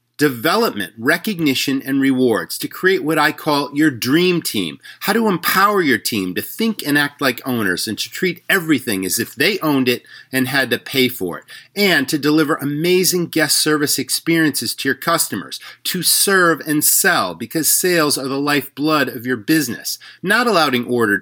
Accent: American